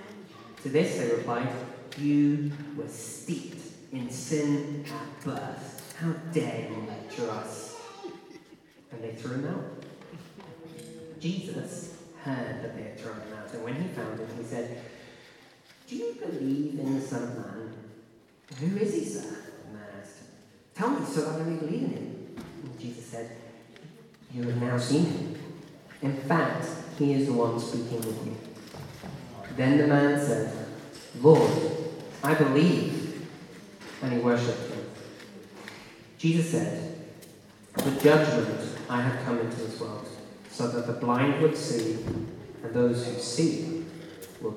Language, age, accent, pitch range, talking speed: English, 40-59, British, 120-160 Hz, 145 wpm